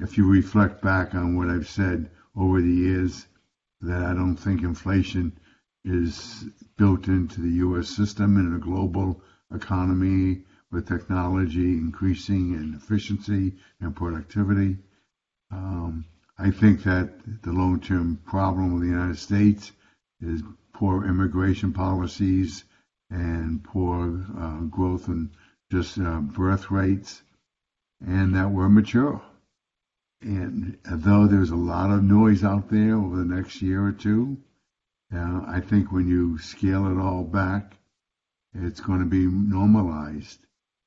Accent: American